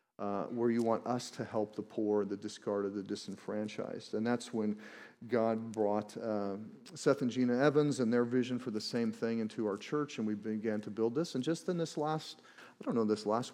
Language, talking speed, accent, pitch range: English, 215 wpm, American, 110-130 Hz